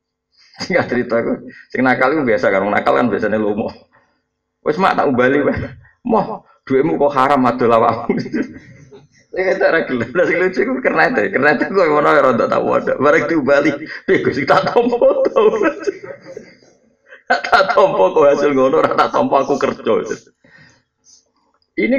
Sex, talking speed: male, 150 wpm